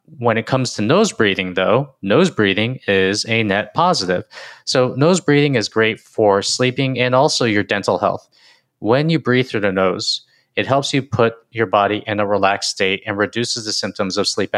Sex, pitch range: male, 105-130 Hz